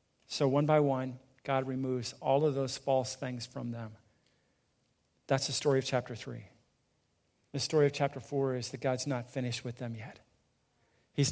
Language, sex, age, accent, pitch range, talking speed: English, male, 40-59, American, 125-145 Hz, 175 wpm